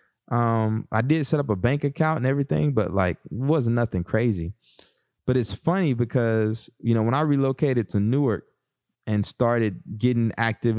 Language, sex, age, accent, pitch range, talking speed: English, male, 20-39, American, 100-115 Hz, 165 wpm